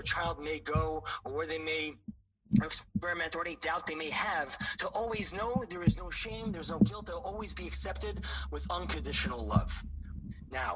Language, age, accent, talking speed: English, 30-49, American, 185 wpm